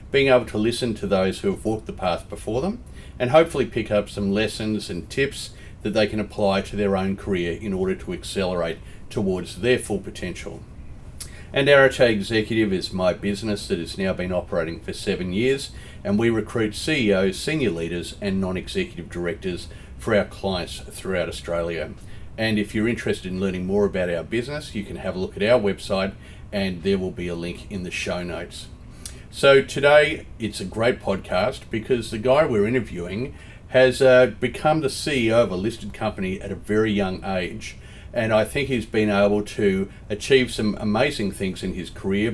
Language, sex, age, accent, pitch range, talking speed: English, male, 40-59, Australian, 95-110 Hz, 185 wpm